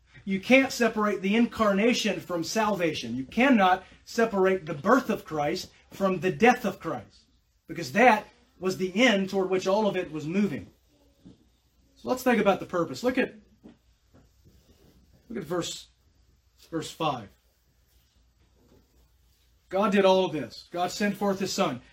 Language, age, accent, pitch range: English, 40-59, American, 150-205 Hz